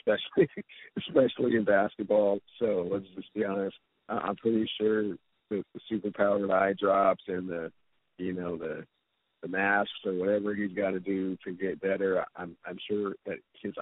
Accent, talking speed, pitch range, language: American, 170 wpm, 95-105 Hz, English